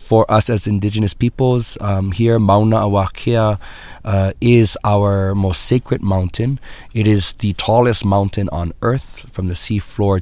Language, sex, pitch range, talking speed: English, male, 95-105 Hz, 155 wpm